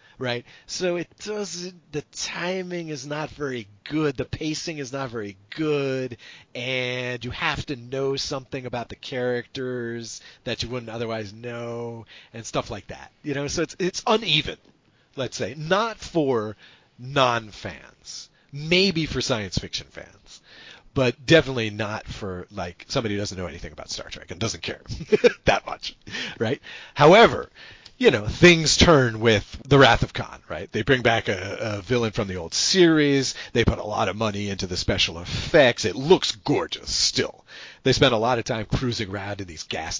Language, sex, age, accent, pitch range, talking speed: English, male, 40-59, American, 100-140 Hz, 175 wpm